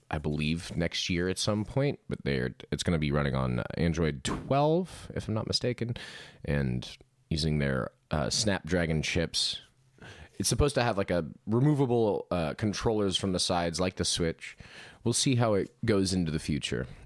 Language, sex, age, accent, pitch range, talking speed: English, male, 30-49, American, 75-120 Hz, 175 wpm